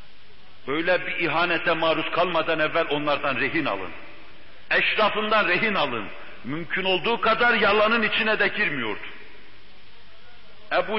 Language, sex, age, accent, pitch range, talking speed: Turkish, male, 60-79, native, 145-210 Hz, 110 wpm